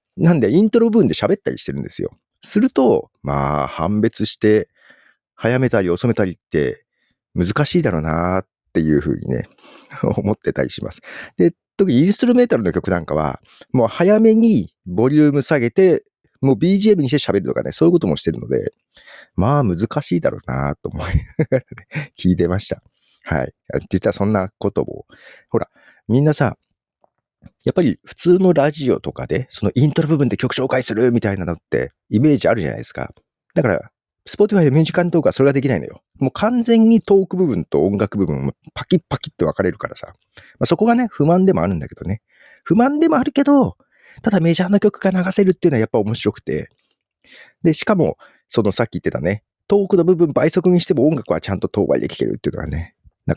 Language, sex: Japanese, male